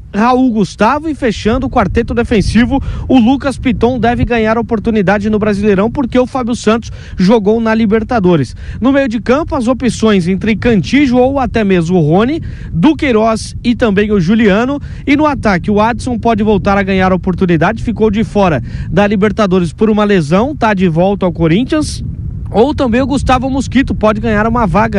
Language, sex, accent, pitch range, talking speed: Portuguese, male, Brazilian, 200-245 Hz, 180 wpm